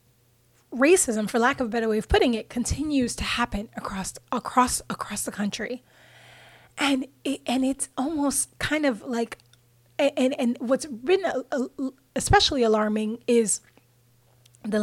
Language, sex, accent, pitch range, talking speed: English, female, American, 215-255 Hz, 140 wpm